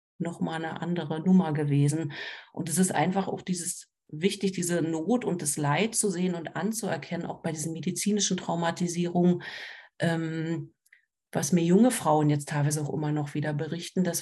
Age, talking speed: 40-59, 170 wpm